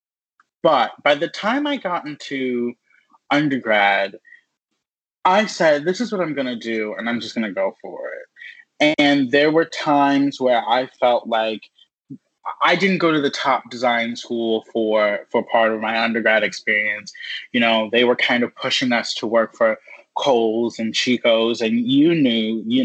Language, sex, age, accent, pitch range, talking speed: English, male, 20-39, American, 115-150 Hz, 170 wpm